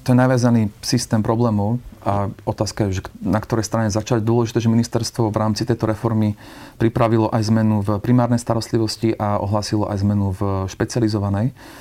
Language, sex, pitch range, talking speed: Slovak, male, 110-120 Hz, 165 wpm